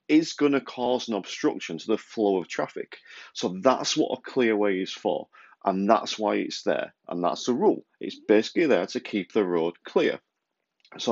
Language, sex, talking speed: English, male, 195 wpm